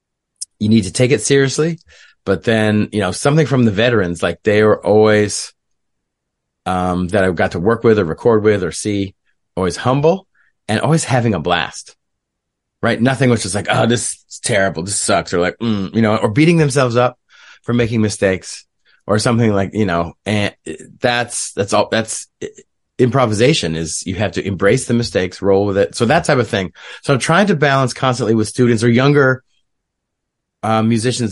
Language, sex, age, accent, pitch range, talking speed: English, male, 30-49, American, 100-125 Hz, 190 wpm